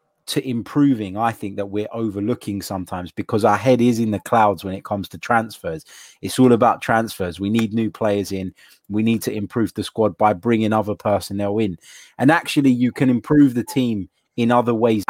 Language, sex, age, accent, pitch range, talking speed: English, male, 20-39, British, 100-120 Hz, 200 wpm